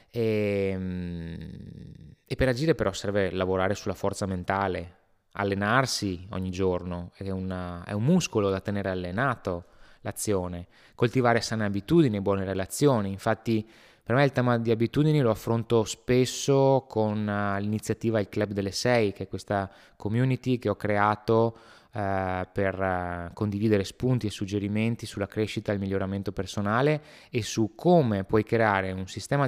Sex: male